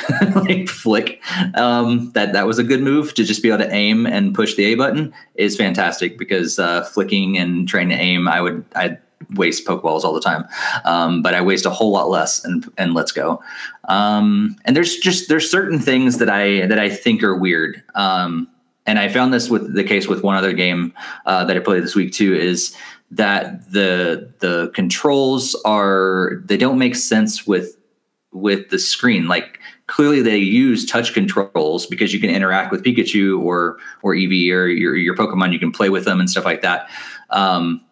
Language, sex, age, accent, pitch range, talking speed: English, male, 30-49, American, 95-130 Hz, 200 wpm